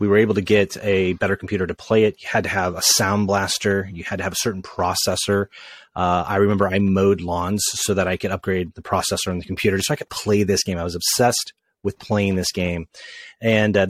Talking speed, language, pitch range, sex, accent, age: 240 wpm, English, 95-110 Hz, male, American, 30-49